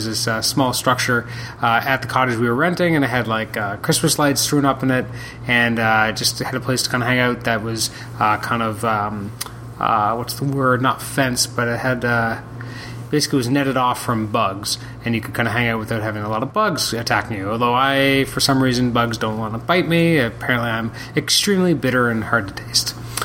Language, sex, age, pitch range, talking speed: English, male, 30-49, 120-140 Hz, 230 wpm